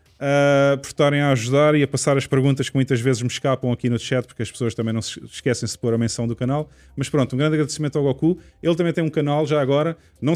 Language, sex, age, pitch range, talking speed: Portuguese, male, 20-39, 115-140 Hz, 265 wpm